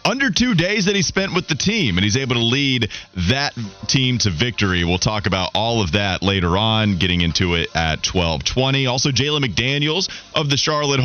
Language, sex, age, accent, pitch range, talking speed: English, male, 30-49, American, 90-130 Hz, 200 wpm